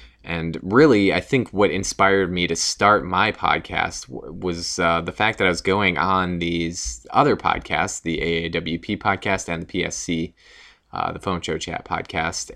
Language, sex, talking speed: English, male, 170 wpm